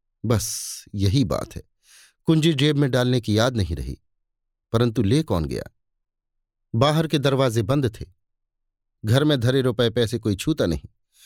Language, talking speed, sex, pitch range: Hindi, 155 wpm, male, 105-140 Hz